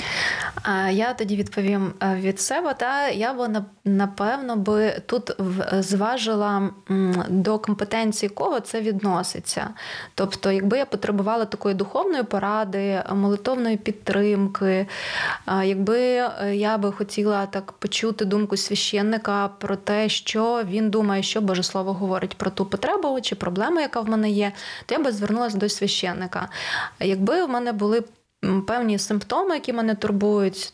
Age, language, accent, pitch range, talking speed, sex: 20-39, Ukrainian, native, 195-215 Hz, 130 wpm, female